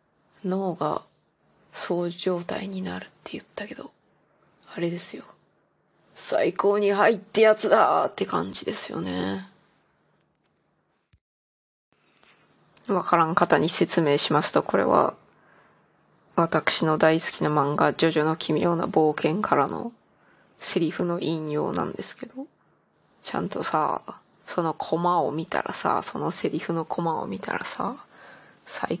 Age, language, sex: 20-39, Japanese, female